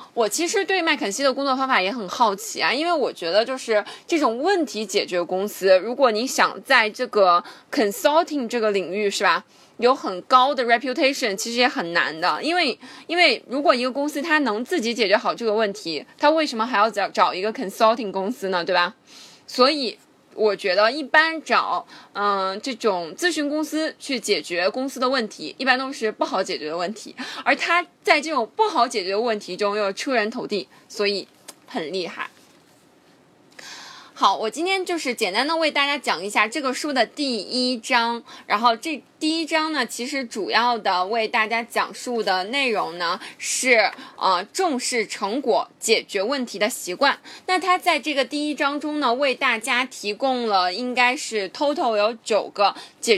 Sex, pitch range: female, 210-300 Hz